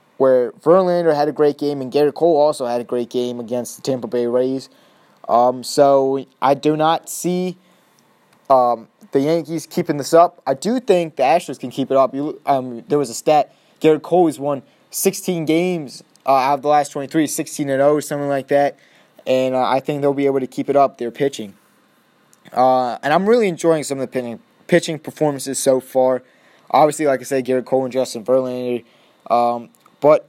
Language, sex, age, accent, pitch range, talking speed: English, male, 20-39, American, 130-150 Hz, 190 wpm